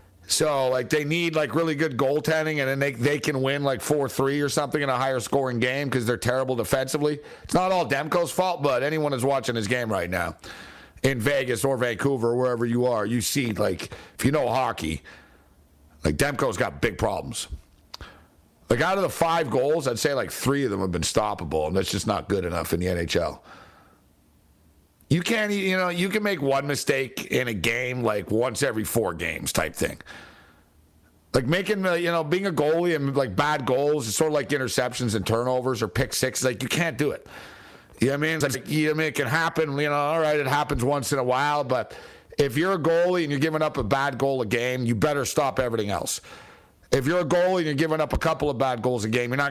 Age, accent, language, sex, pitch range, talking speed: 50-69, American, English, male, 120-155 Hz, 230 wpm